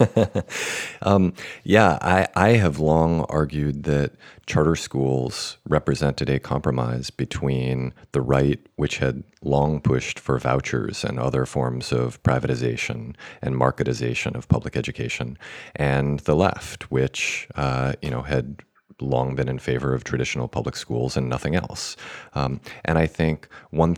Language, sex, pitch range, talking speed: English, male, 65-75 Hz, 140 wpm